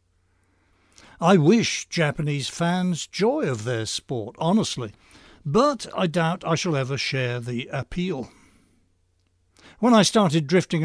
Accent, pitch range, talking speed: British, 105-170 Hz, 120 wpm